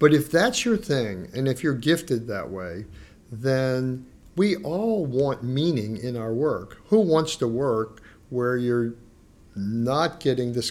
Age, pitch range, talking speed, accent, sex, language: 50-69, 115-155 Hz, 155 wpm, American, male, English